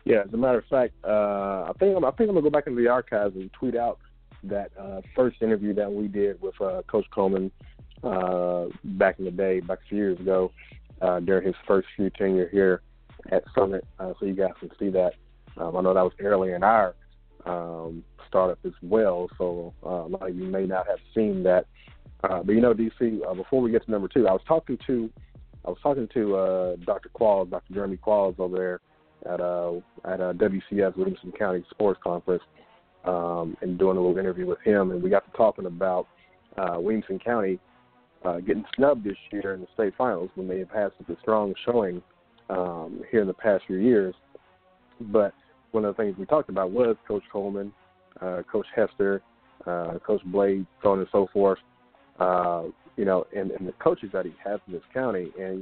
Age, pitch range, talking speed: 30-49, 90-105 Hz, 210 wpm